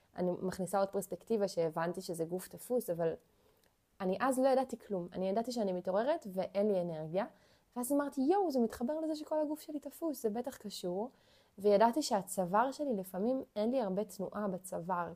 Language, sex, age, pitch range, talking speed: Hebrew, female, 20-39, 190-265 Hz, 170 wpm